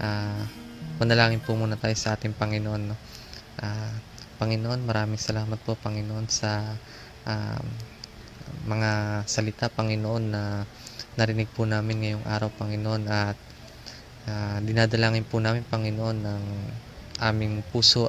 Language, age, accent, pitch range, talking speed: Filipino, 20-39, native, 105-115 Hz, 115 wpm